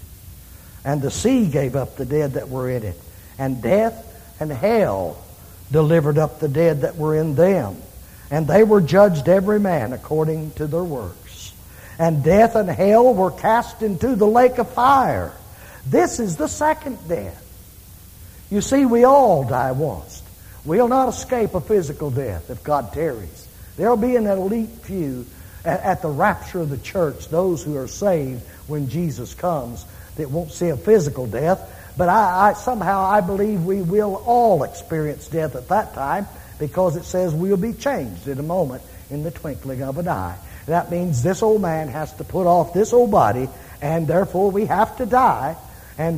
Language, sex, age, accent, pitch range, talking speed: English, male, 60-79, American, 130-200 Hz, 175 wpm